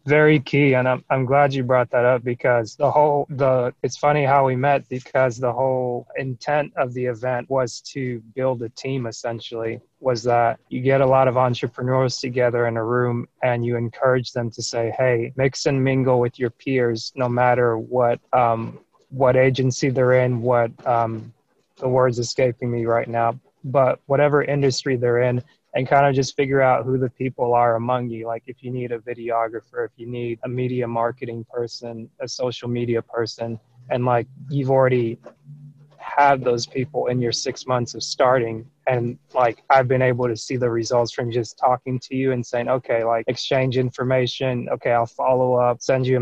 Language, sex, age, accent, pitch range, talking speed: English, male, 20-39, American, 120-130 Hz, 190 wpm